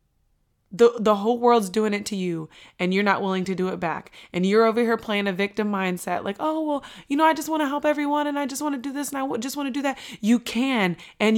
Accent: American